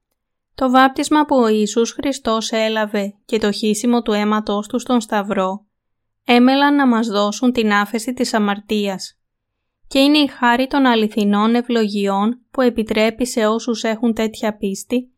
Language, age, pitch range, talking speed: Greek, 20-39, 210-250 Hz, 145 wpm